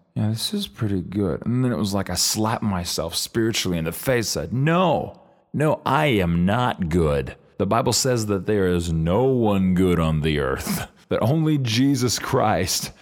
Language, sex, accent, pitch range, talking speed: English, male, American, 90-120 Hz, 185 wpm